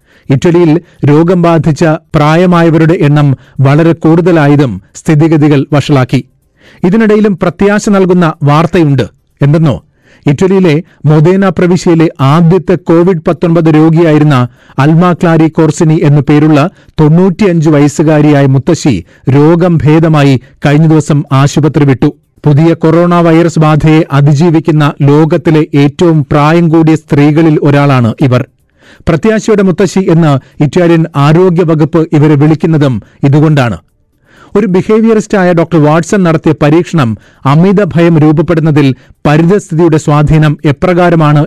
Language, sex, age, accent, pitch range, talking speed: Malayalam, male, 40-59, native, 145-170 Hz, 95 wpm